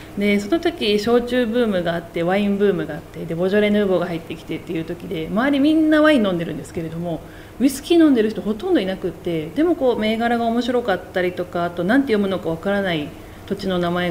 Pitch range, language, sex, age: 180-260 Hz, Japanese, female, 40-59